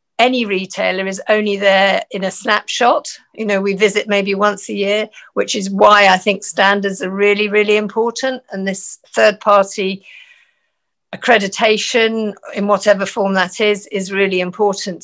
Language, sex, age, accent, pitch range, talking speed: English, female, 50-69, British, 190-210 Hz, 150 wpm